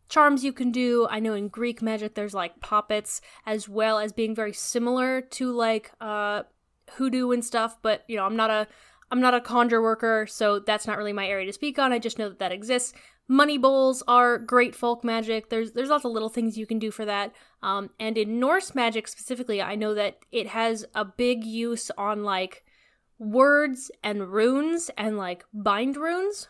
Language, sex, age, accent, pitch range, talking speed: English, female, 10-29, American, 210-245 Hz, 205 wpm